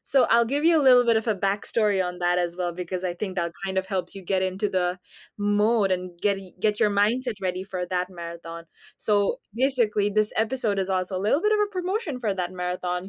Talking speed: 230 wpm